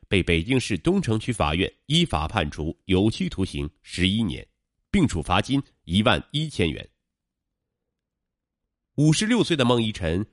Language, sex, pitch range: Chinese, male, 90-150 Hz